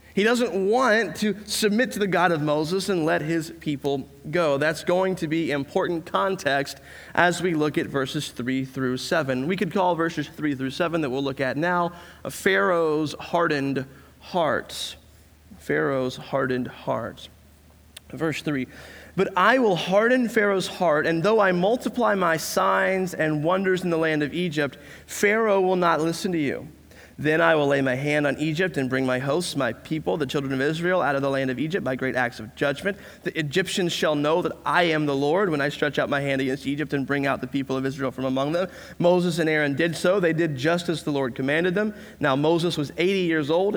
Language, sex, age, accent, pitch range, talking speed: English, male, 30-49, American, 135-180 Hz, 205 wpm